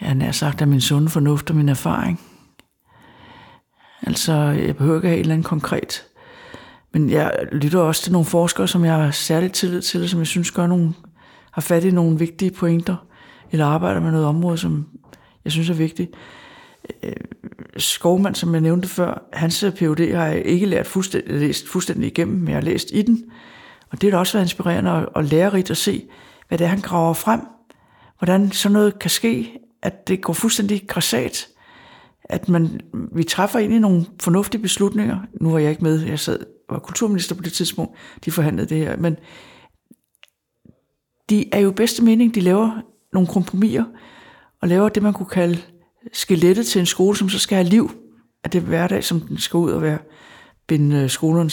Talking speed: 185 wpm